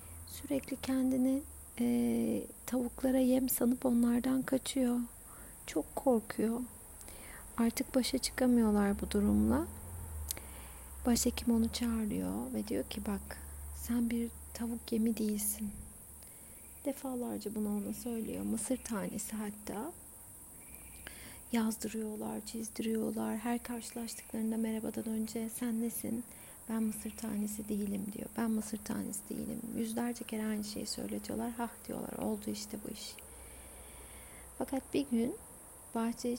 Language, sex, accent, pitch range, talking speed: Turkish, female, native, 215-245 Hz, 110 wpm